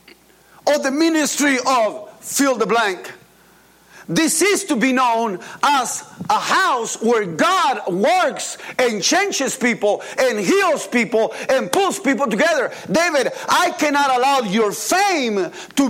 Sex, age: male, 50-69